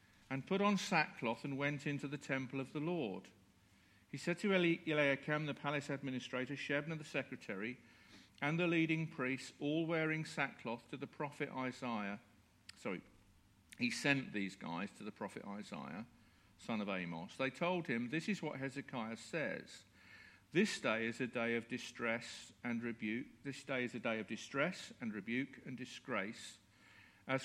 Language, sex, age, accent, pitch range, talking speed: English, male, 50-69, British, 115-155 Hz, 160 wpm